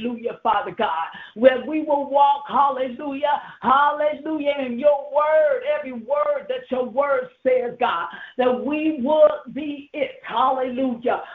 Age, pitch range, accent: 50-69, 235-280 Hz, American